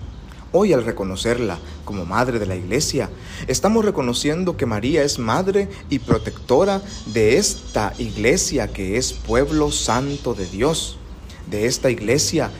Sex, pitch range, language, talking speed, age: male, 95-120 Hz, Spanish, 135 wpm, 40-59